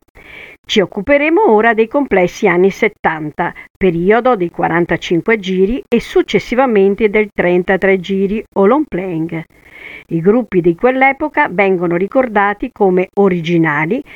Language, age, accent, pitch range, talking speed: Italian, 50-69, native, 170-245 Hz, 115 wpm